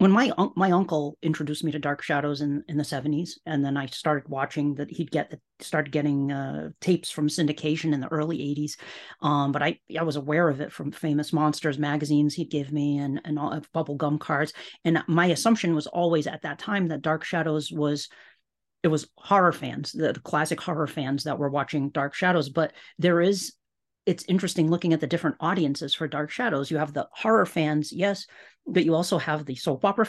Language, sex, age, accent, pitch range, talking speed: English, female, 40-59, American, 145-170 Hz, 205 wpm